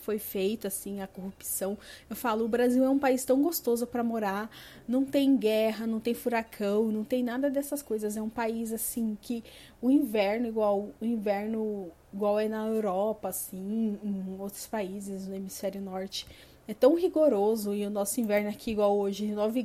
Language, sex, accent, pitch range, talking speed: Portuguese, female, Brazilian, 210-255 Hz, 185 wpm